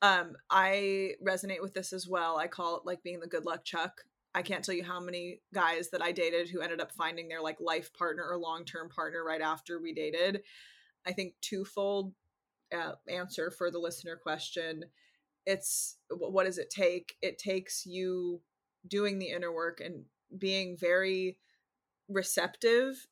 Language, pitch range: English, 175-195 Hz